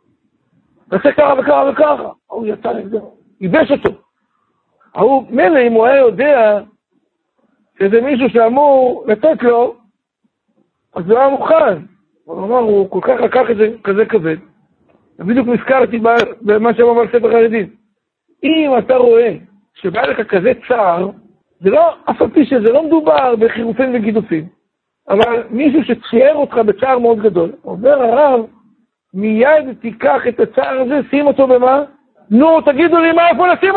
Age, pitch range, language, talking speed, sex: 60-79, 230-310 Hz, Hebrew, 135 wpm, male